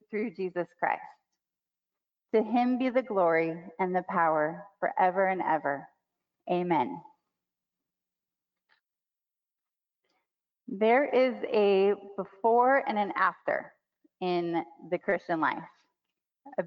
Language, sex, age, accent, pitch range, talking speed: English, female, 30-49, American, 185-230 Hz, 95 wpm